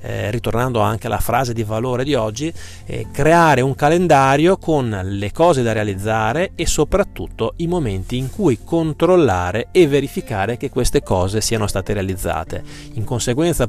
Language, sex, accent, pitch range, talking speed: Italian, male, native, 115-150 Hz, 150 wpm